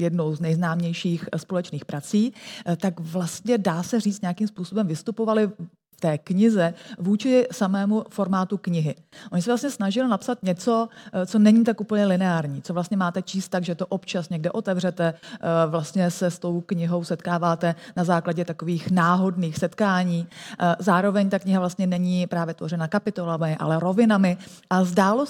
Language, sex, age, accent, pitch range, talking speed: Czech, female, 30-49, native, 175-215 Hz, 150 wpm